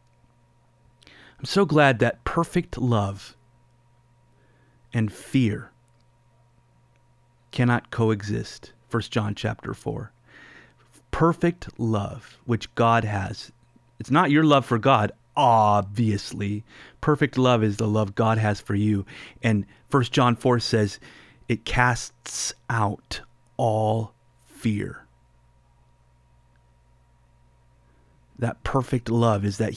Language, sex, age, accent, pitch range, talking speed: English, male, 30-49, American, 110-130 Hz, 100 wpm